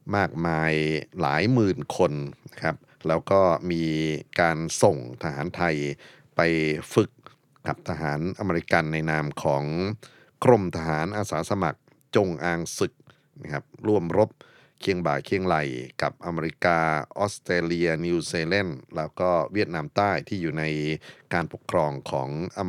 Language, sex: Thai, male